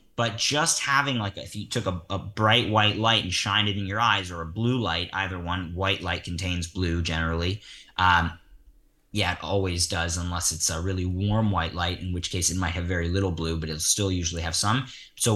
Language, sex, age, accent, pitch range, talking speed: English, male, 20-39, American, 95-120 Hz, 225 wpm